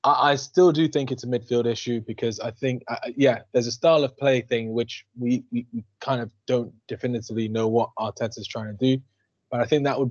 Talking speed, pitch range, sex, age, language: 225 wpm, 115-135 Hz, male, 20-39, English